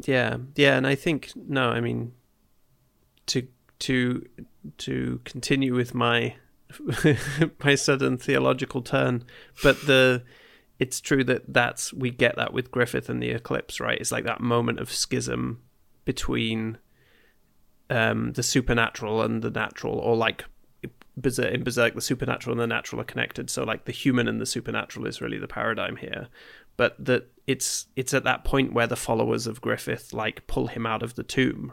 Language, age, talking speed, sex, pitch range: English, 30-49, 165 wpm, male, 110-130 Hz